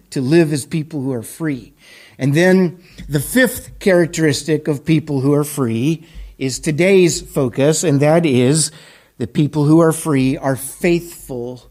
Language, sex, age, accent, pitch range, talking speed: English, male, 50-69, American, 150-205 Hz, 155 wpm